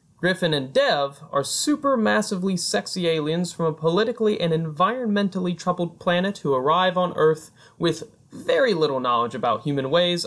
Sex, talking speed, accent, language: male, 145 wpm, American, English